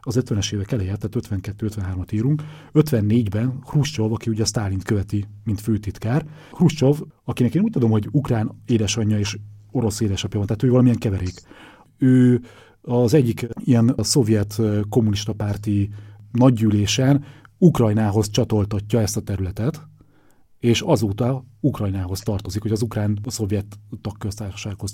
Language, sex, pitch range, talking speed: Hungarian, male, 105-120 Hz, 130 wpm